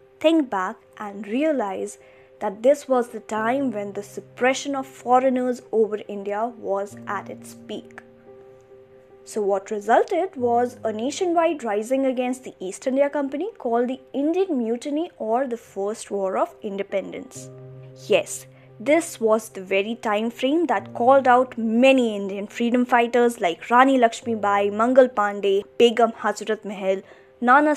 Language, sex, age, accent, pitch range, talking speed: English, female, 20-39, Indian, 200-270 Hz, 145 wpm